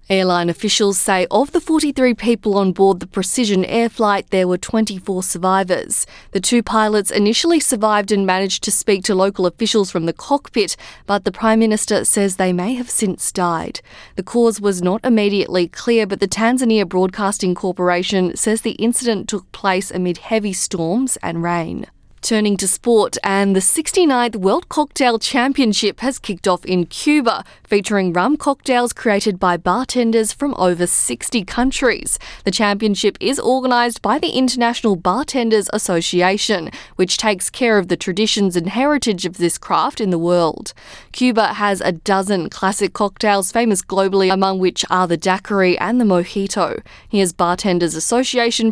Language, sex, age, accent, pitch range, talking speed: English, female, 20-39, Australian, 185-230 Hz, 160 wpm